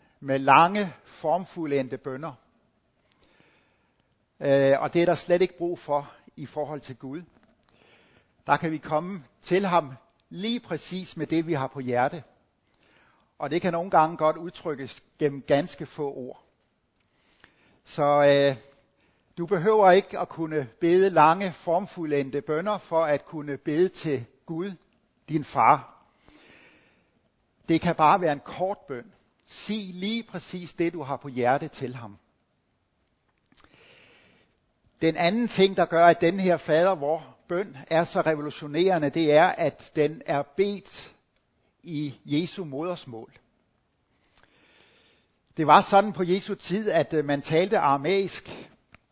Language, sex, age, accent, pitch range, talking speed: Danish, male, 60-79, native, 140-180 Hz, 135 wpm